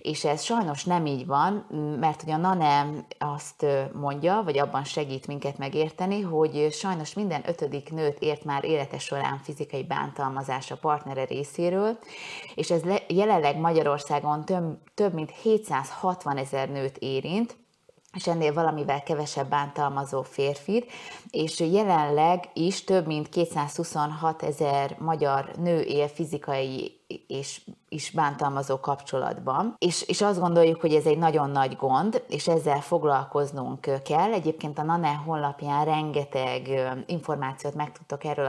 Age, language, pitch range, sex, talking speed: 30-49, Hungarian, 140-175 Hz, female, 130 wpm